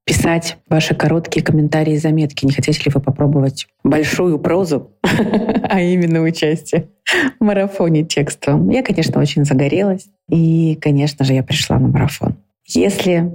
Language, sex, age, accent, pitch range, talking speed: Russian, female, 30-49, native, 150-180 Hz, 140 wpm